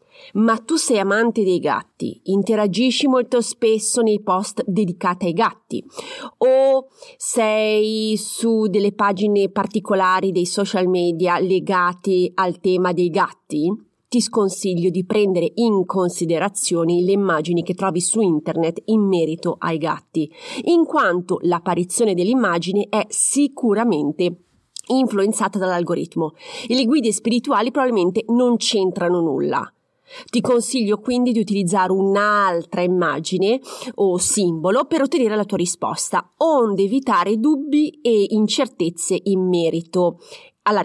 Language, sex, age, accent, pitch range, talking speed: Italian, female, 30-49, native, 180-240 Hz, 120 wpm